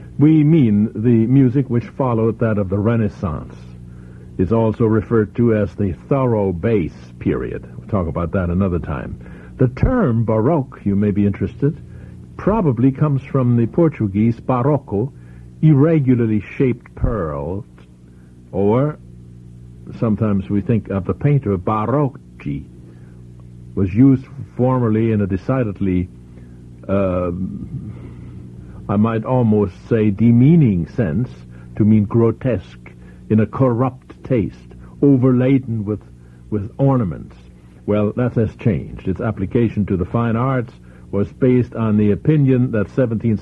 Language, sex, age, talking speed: English, male, 60-79, 125 wpm